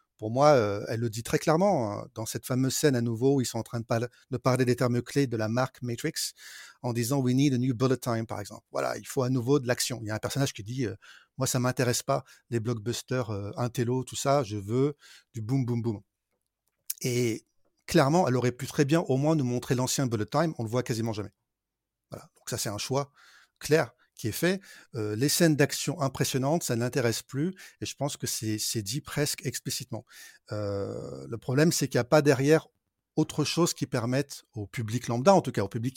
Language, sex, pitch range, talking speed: French, male, 115-140 Hz, 240 wpm